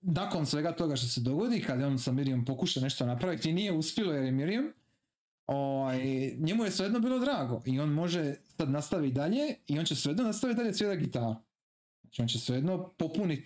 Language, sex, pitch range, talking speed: Croatian, male, 120-165 Hz, 200 wpm